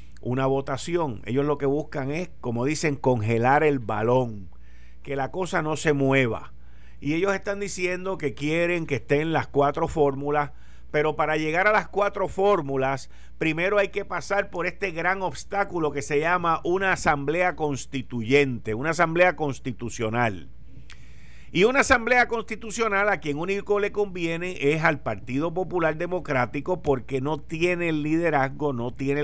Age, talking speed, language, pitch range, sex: 50-69, 150 wpm, Spanish, 115-170 Hz, male